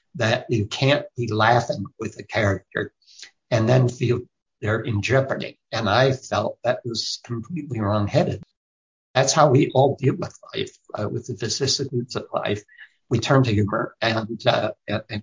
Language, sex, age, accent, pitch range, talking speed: English, male, 60-79, American, 110-130 Hz, 165 wpm